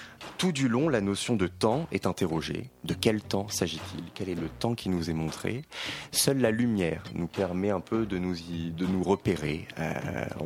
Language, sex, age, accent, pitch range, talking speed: French, male, 30-49, French, 80-100 Hz, 200 wpm